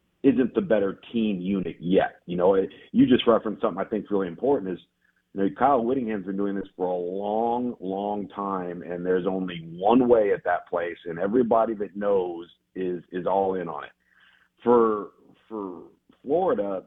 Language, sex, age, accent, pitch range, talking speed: English, male, 40-59, American, 95-115 Hz, 185 wpm